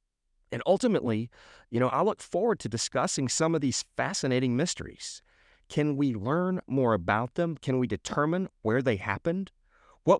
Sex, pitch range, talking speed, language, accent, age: male, 105-145 Hz, 160 wpm, English, American, 40-59